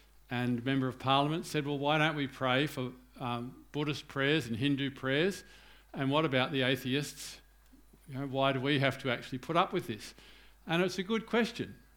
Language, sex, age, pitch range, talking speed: English, male, 50-69, 125-155 Hz, 185 wpm